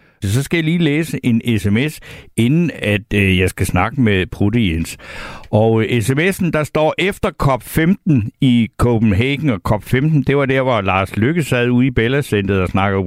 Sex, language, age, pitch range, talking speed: male, Danish, 60-79, 110-150 Hz, 175 wpm